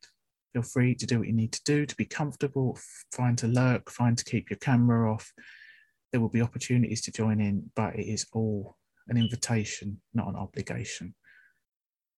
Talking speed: 180 wpm